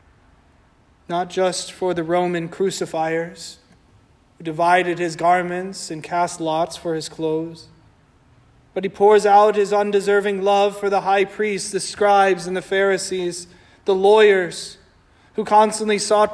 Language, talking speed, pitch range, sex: English, 135 wpm, 160-200 Hz, male